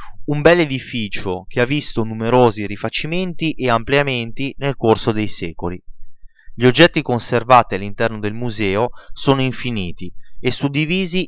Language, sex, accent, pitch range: Italian, male, native, 110-140 Hz